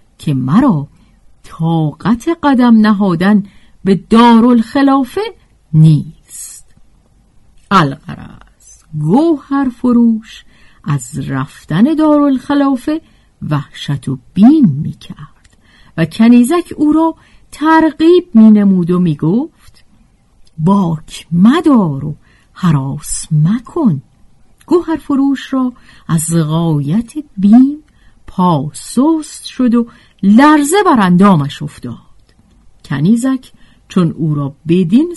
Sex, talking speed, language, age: female, 85 wpm, Persian, 50-69